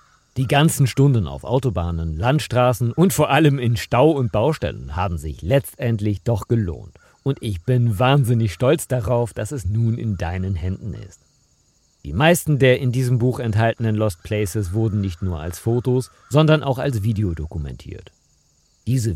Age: 50-69